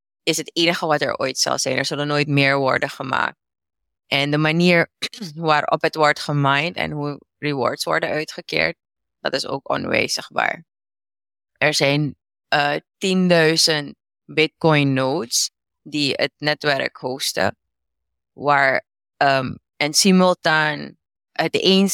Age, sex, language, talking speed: 20-39, female, Dutch, 125 wpm